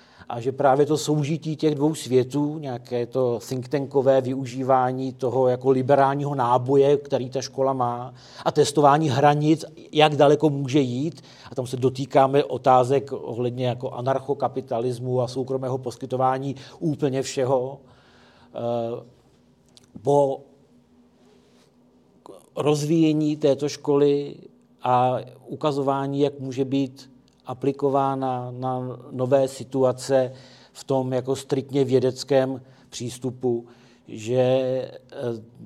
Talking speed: 105 wpm